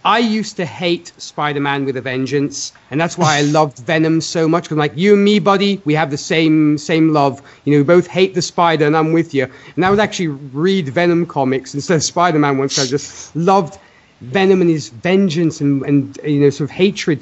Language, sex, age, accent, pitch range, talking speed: English, male, 30-49, British, 135-175 Hz, 225 wpm